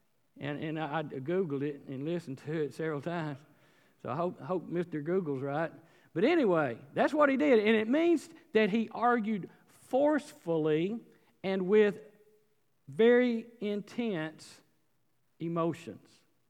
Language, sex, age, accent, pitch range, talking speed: English, male, 50-69, American, 175-235 Hz, 135 wpm